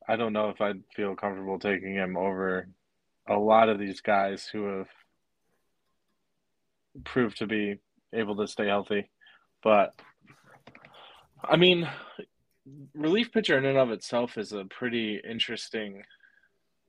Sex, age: male, 20-39